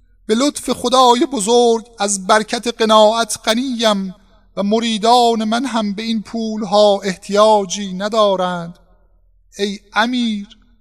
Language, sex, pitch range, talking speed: Persian, male, 185-215 Hz, 110 wpm